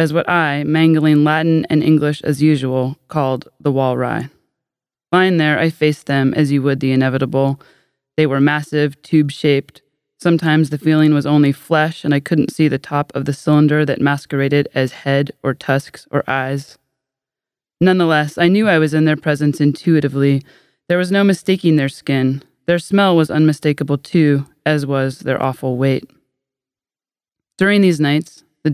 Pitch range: 135-155 Hz